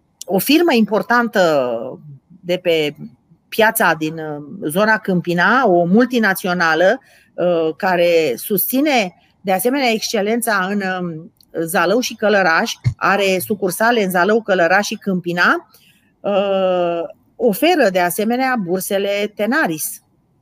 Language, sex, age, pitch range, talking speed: Romanian, female, 40-59, 185-245 Hz, 95 wpm